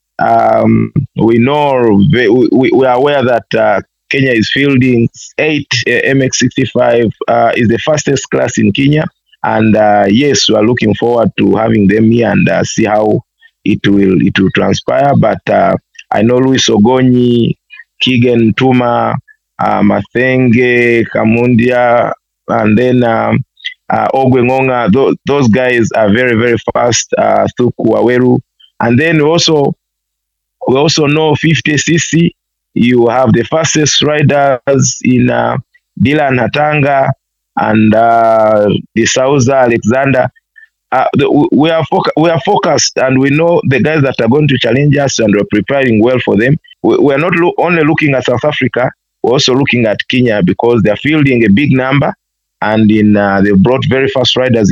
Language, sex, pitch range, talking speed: English, male, 115-140 Hz, 155 wpm